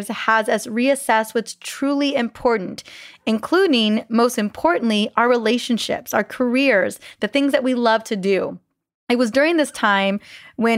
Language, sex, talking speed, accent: English, female, 145 wpm, American